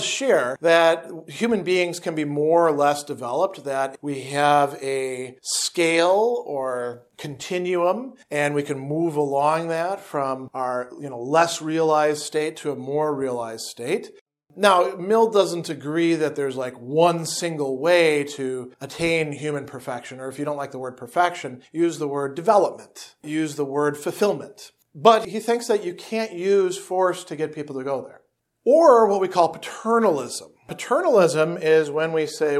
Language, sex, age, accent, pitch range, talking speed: English, male, 40-59, American, 135-170 Hz, 165 wpm